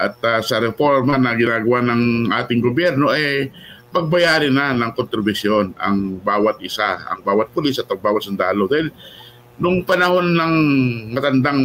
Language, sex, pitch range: Filipino, male, 115-140 Hz